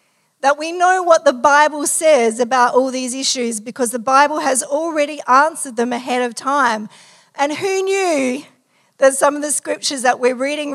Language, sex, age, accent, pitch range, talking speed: English, female, 50-69, Australian, 230-280 Hz, 180 wpm